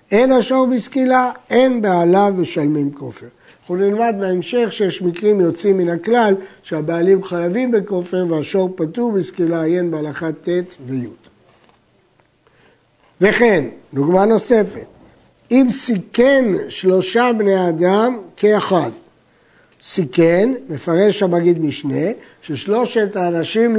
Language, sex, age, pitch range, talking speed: Hebrew, male, 60-79, 170-225 Hz, 100 wpm